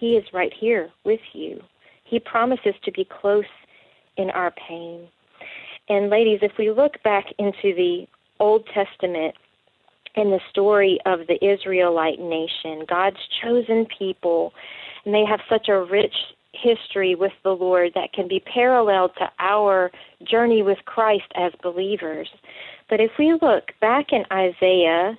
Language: English